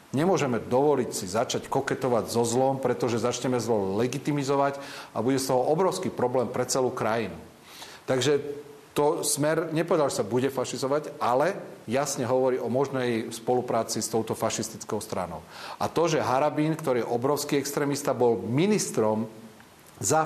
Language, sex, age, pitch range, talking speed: Czech, male, 40-59, 115-140 Hz, 140 wpm